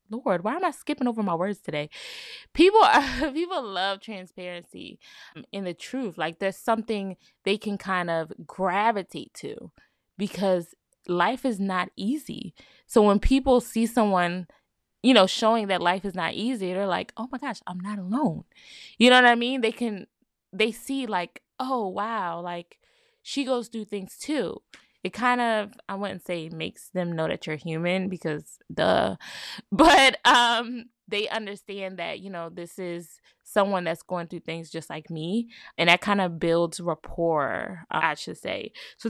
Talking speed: 170 wpm